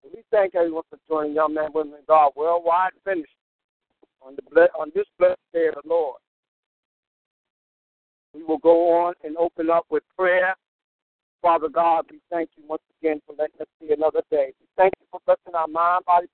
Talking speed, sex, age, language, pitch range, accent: 190 wpm, male, 60-79, English, 160-235 Hz, American